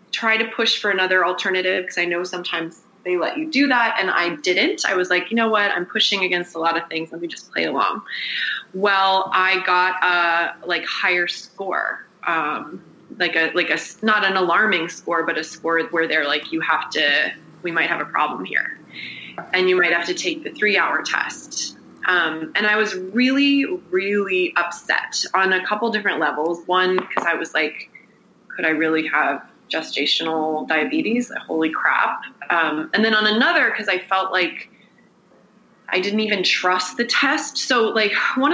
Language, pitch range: English, 170-215 Hz